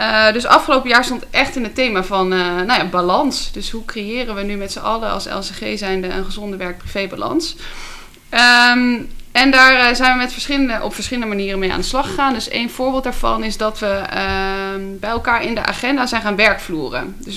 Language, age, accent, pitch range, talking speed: Dutch, 20-39, Dutch, 195-245 Hz, 190 wpm